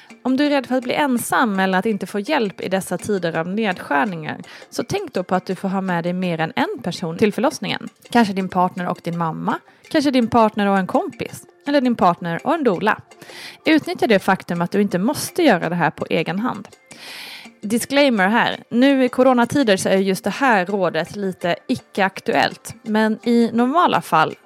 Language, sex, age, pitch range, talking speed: Swedish, female, 20-39, 185-255 Hz, 200 wpm